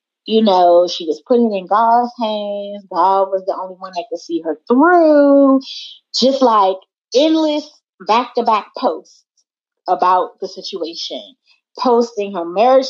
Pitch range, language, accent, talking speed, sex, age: 185-245 Hz, English, American, 135 wpm, female, 30-49